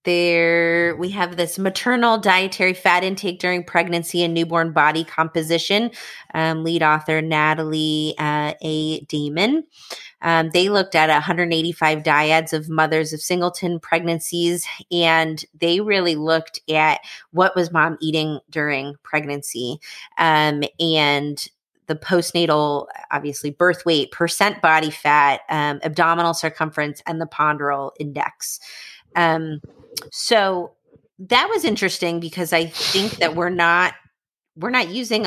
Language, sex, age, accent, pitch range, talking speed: English, female, 20-39, American, 155-175 Hz, 125 wpm